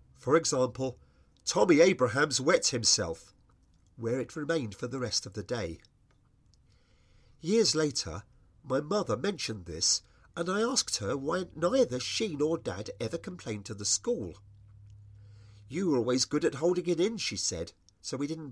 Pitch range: 100-155 Hz